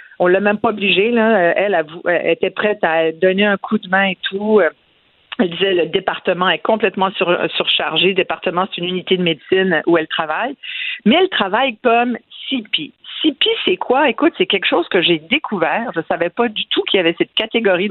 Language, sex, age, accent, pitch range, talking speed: French, female, 50-69, French, 180-290 Hz, 200 wpm